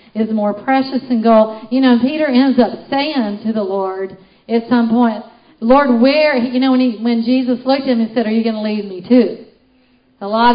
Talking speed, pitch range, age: 220 wpm, 215-255 Hz, 50-69